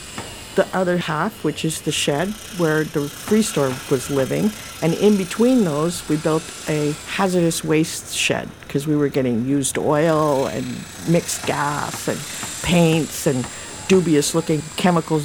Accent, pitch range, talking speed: American, 145-185 Hz, 150 wpm